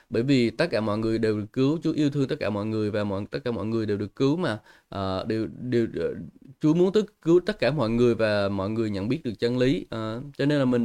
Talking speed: 275 wpm